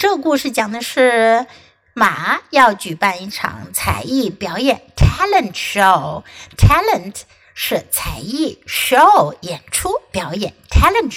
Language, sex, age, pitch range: Chinese, female, 60-79, 205-275 Hz